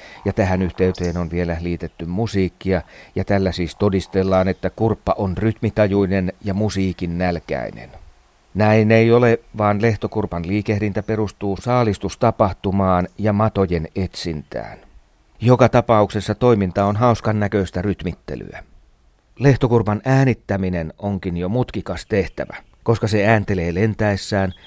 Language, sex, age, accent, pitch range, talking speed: Finnish, male, 40-59, native, 95-115 Hz, 110 wpm